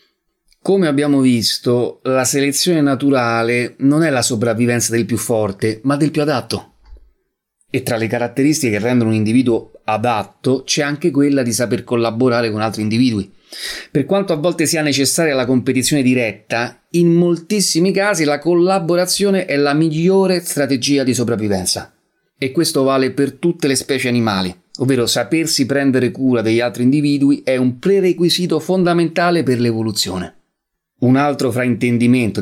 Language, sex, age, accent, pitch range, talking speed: Italian, male, 30-49, native, 115-140 Hz, 145 wpm